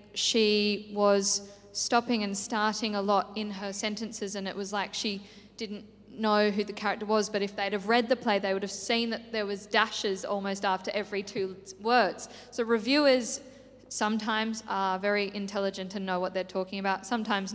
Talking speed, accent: 185 wpm, Australian